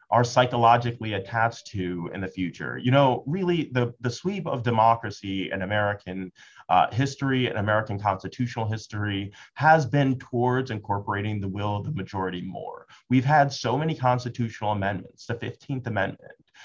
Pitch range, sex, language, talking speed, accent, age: 110-145 Hz, male, English, 150 wpm, American, 30-49